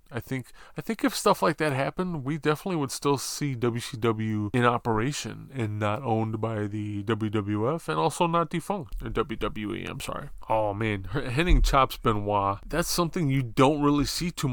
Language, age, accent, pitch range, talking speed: English, 20-39, American, 110-135 Hz, 180 wpm